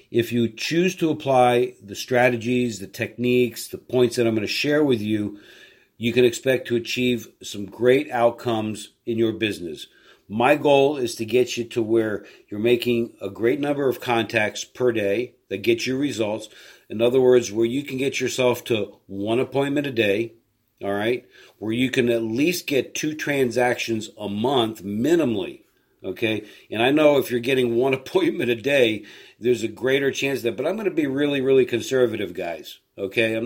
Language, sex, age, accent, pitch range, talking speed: English, male, 50-69, American, 115-135 Hz, 185 wpm